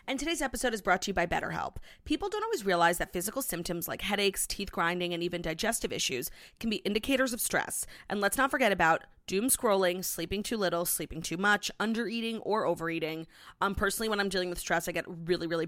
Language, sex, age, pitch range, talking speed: English, female, 30-49, 170-220 Hz, 215 wpm